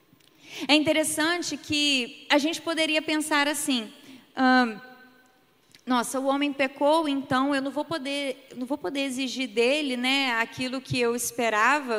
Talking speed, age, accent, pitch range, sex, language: 130 wpm, 20-39, Brazilian, 230-285 Hz, female, Portuguese